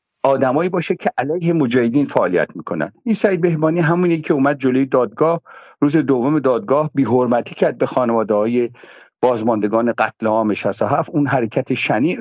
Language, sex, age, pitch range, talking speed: English, male, 50-69, 135-180 Hz, 145 wpm